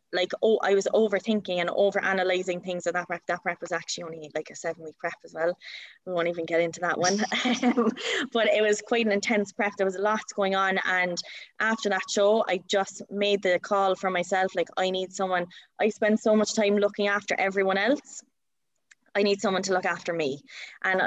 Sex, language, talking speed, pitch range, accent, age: female, English, 210 wpm, 175-205 Hz, Irish, 20-39